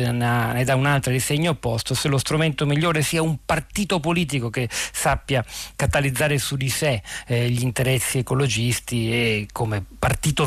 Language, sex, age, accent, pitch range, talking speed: Italian, male, 40-59, native, 125-155 Hz, 155 wpm